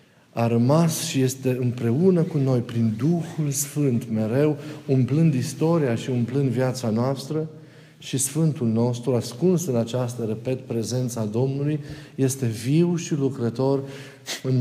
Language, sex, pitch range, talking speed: Romanian, male, 120-145 Hz, 125 wpm